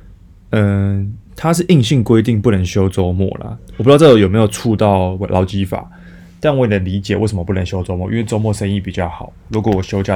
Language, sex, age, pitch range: Chinese, male, 20-39, 95-110 Hz